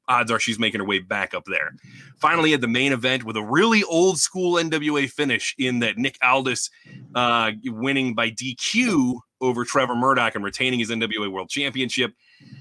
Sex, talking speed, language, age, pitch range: male, 180 wpm, English, 30-49, 110-135 Hz